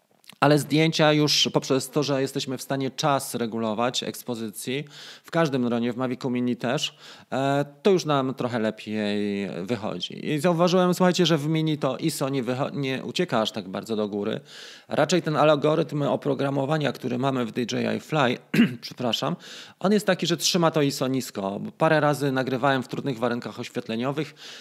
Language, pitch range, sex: Polish, 125-165 Hz, male